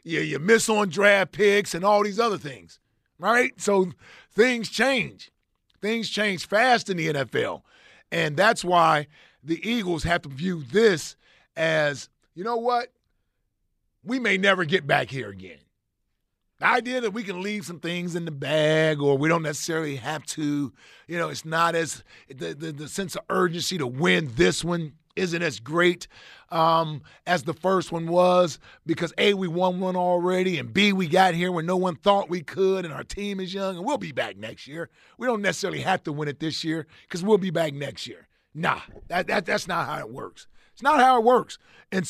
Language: English